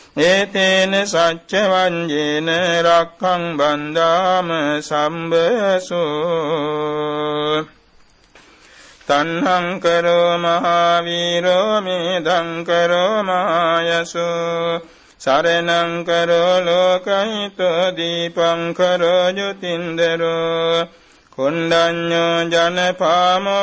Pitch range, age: 165-180 Hz, 60-79